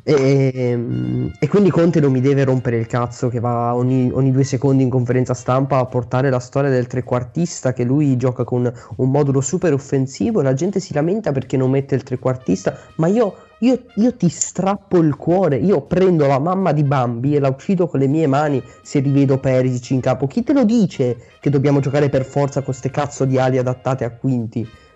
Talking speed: 200 wpm